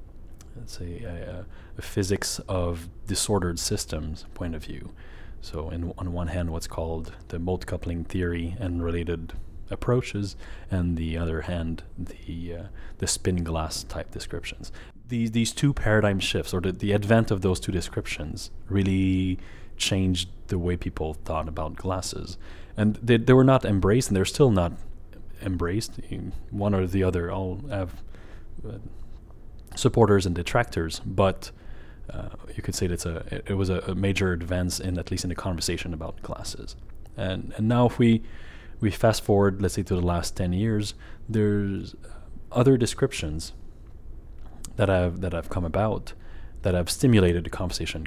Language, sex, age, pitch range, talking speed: English, male, 30-49, 85-105 Hz, 160 wpm